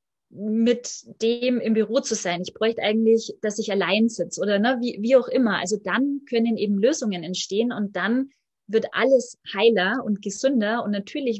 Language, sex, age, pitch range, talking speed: German, female, 20-39, 200-245 Hz, 180 wpm